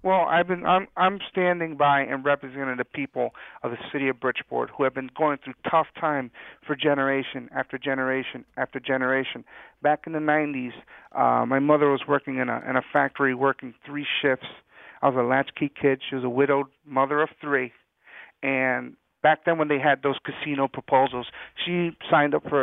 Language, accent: English, American